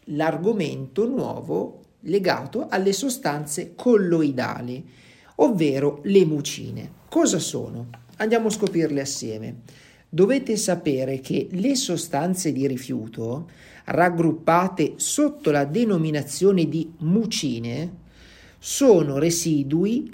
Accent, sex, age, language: native, male, 50-69, Italian